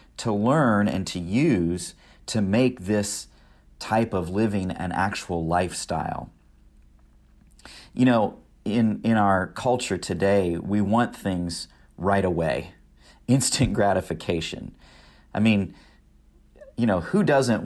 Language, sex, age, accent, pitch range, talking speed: English, male, 40-59, American, 90-115 Hz, 115 wpm